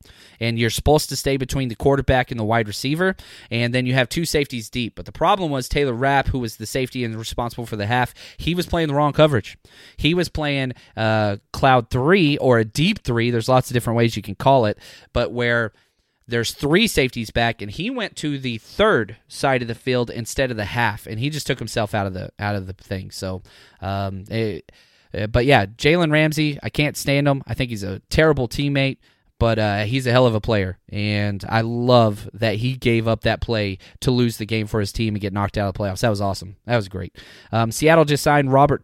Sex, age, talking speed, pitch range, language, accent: male, 20-39, 235 wpm, 110-140 Hz, English, American